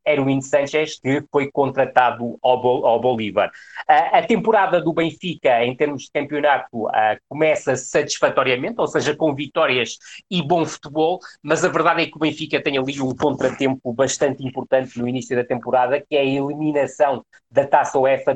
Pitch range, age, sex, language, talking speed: 125-150 Hz, 20-39, male, Portuguese, 170 wpm